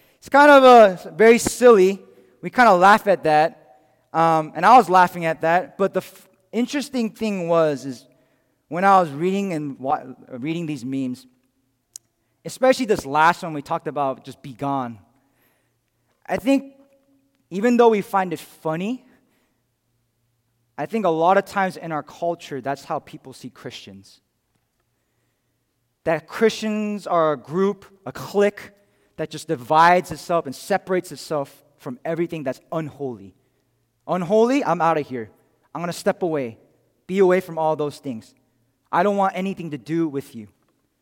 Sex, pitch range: male, 135-200 Hz